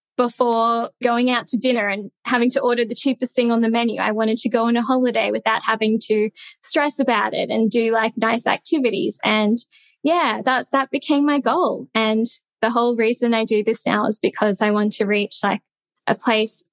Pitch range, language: 220-260 Hz, English